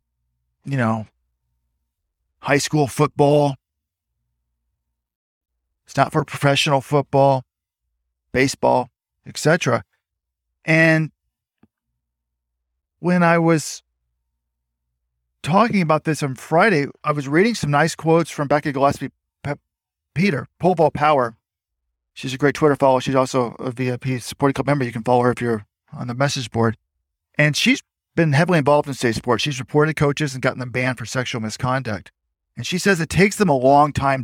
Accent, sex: American, male